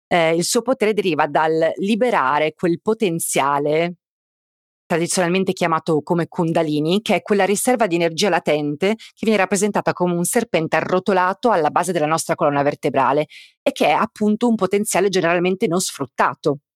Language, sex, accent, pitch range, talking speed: Italian, female, native, 160-205 Hz, 150 wpm